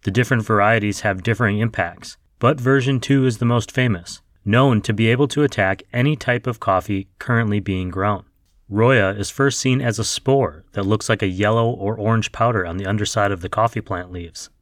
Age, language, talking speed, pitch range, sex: 30-49, English, 200 wpm, 95-120 Hz, male